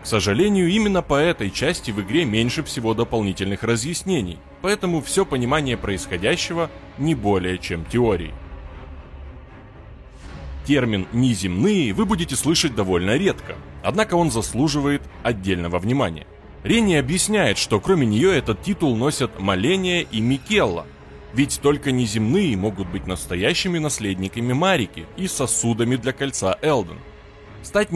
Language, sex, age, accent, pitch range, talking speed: Russian, male, 20-39, native, 95-155 Hz, 120 wpm